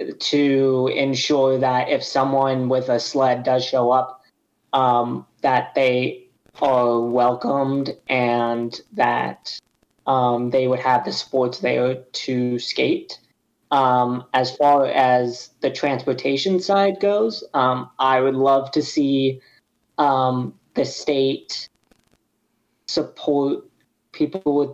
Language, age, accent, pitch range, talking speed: English, 20-39, American, 125-140 Hz, 115 wpm